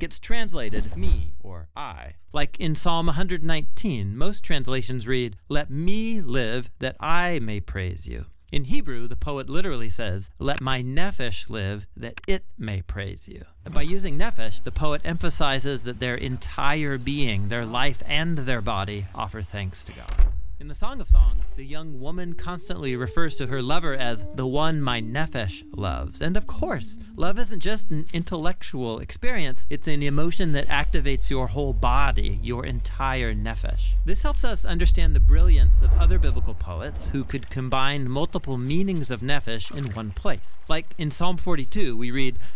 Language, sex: English, male